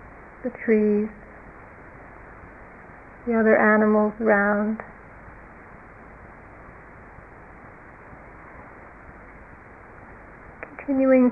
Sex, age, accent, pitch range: female, 40-59, American, 210-235 Hz